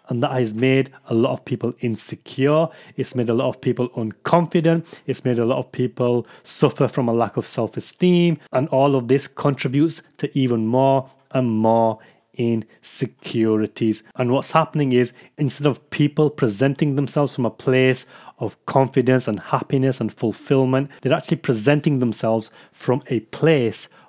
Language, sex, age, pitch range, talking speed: English, male, 30-49, 120-150 Hz, 160 wpm